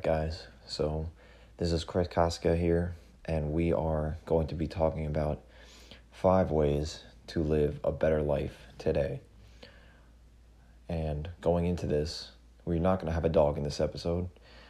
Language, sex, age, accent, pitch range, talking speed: English, male, 20-39, American, 70-85 Hz, 150 wpm